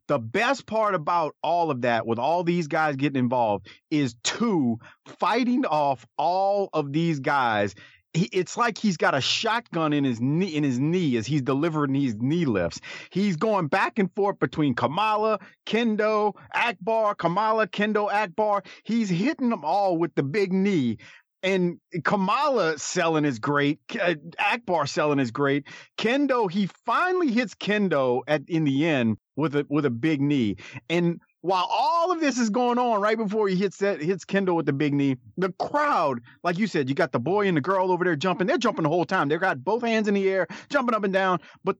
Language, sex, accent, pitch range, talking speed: English, male, American, 145-210 Hz, 190 wpm